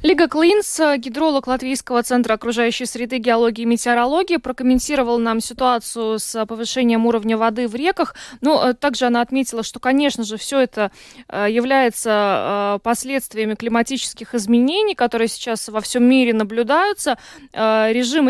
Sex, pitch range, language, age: female, 225-265 Hz, Russian, 20-39